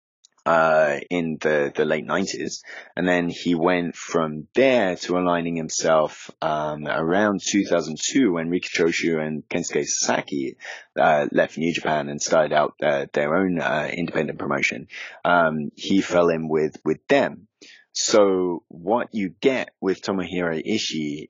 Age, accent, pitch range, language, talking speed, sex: 20-39, British, 75-90 Hz, English, 145 wpm, male